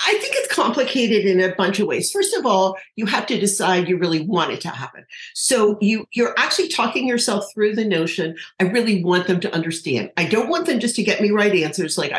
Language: English